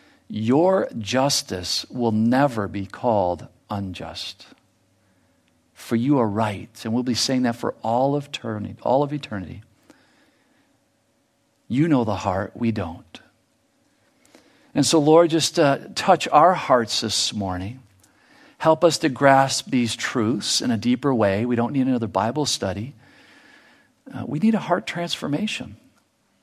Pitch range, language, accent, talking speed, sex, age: 105-145 Hz, English, American, 130 wpm, male, 50-69